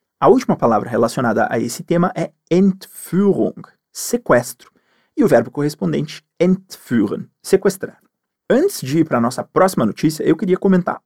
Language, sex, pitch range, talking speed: Portuguese, male, 135-200 Hz, 140 wpm